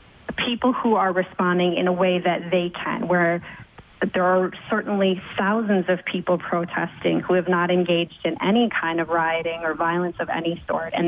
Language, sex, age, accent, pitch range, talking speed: English, female, 30-49, American, 170-195 Hz, 180 wpm